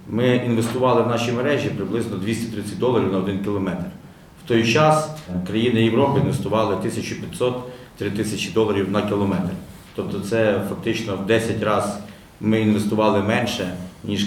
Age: 40-59